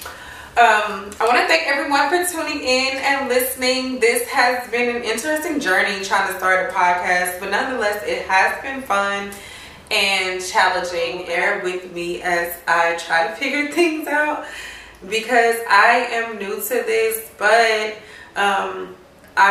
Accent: American